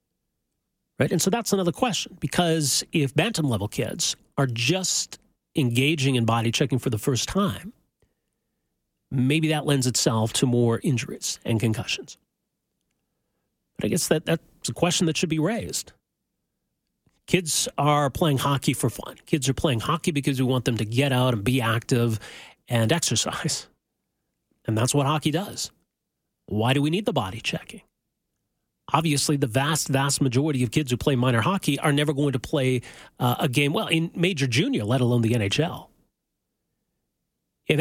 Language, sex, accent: English, male, American